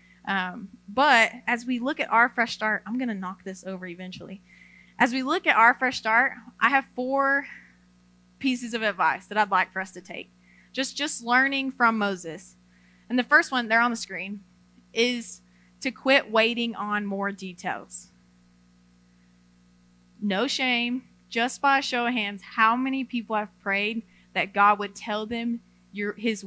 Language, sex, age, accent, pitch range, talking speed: English, female, 20-39, American, 180-255 Hz, 170 wpm